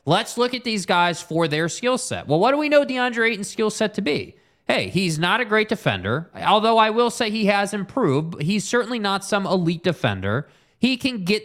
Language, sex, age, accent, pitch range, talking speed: English, male, 20-39, American, 155-205 Hz, 220 wpm